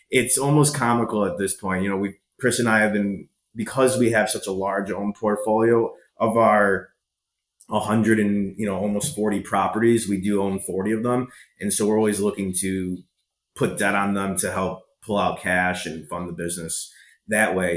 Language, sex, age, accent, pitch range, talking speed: English, male, 30-49, American, 90-110 Hz, 195 wpm